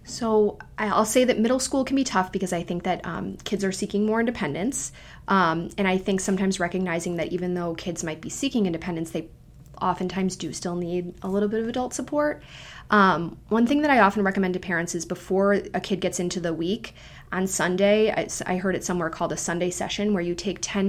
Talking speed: 220 wpm